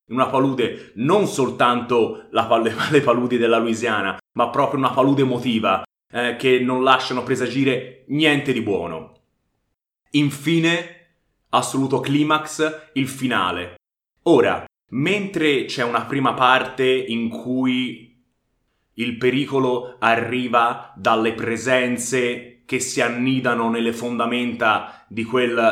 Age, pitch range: 30-49, 120-140 Hz